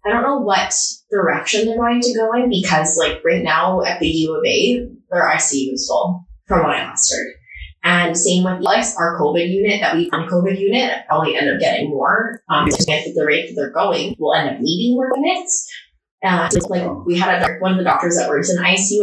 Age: 20-39